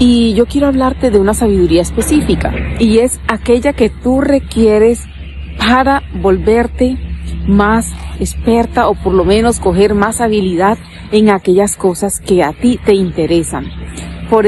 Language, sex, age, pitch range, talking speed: Spanish, female, 40-59, 195-235 Hz, 140 wpm